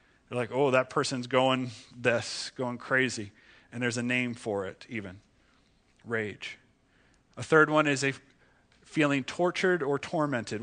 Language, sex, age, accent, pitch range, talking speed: English, male, 40-59, American, 130-155 Hz, 145 wpm